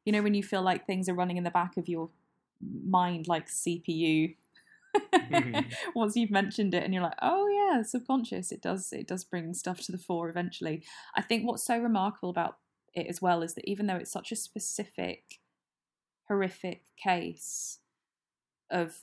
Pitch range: 160-210 Hz